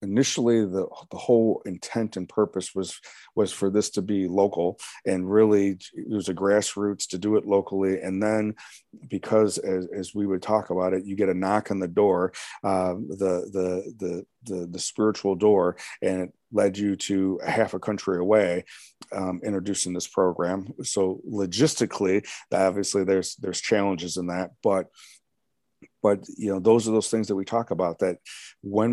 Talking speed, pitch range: 175 wpm, 95-110 Hz